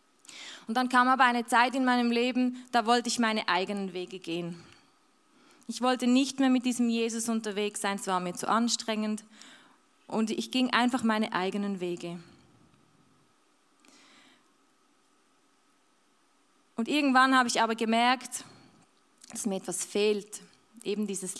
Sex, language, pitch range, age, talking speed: female, German, 200-255 Hz, 20-39, 135 wpm